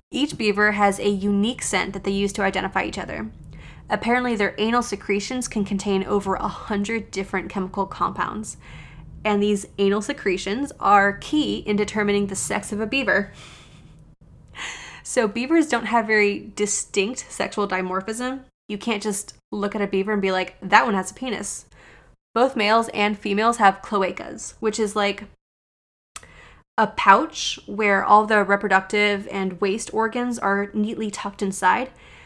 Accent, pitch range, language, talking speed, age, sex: American, 195-235 Hz, English, 155 wpm, 20-39, female